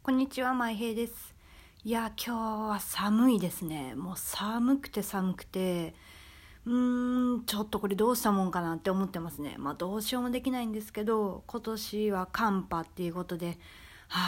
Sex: female